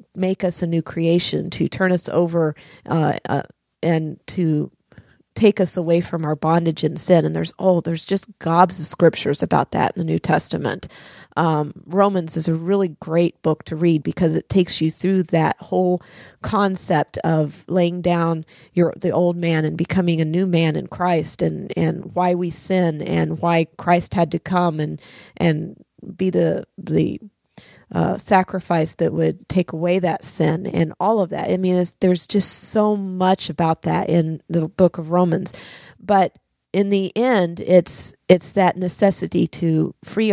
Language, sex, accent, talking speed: English, female, American, 175 wpm